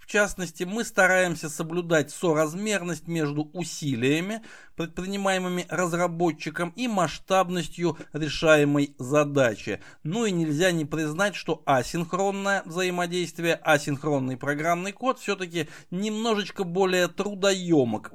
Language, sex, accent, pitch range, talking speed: Russian, male, native, 150-190 Hz, 95 wpm